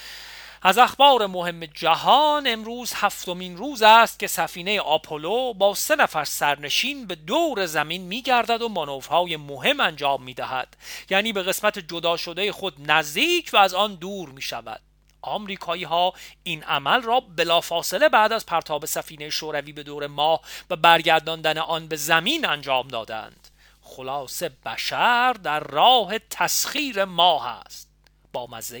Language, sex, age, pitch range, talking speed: Persian, male, 40-59, 150-210 Hz, 135 wpm